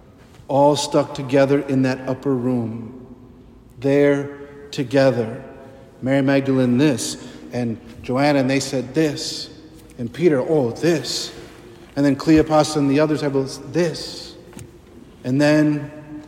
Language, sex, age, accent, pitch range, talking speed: English, male, 50-69, American, 125-150 Hz, 120 wpm